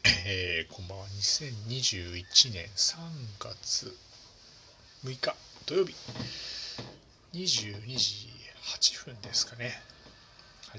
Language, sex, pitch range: Japanese, male, 100-130 Hz